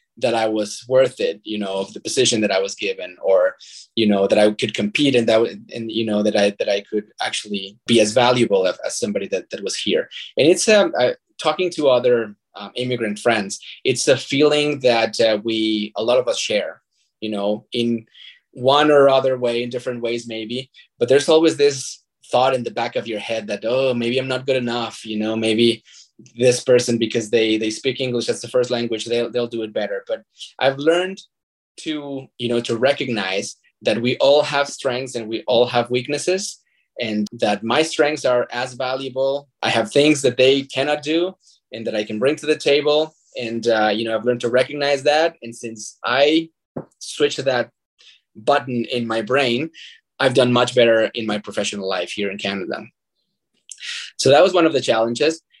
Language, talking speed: English, 200 wpm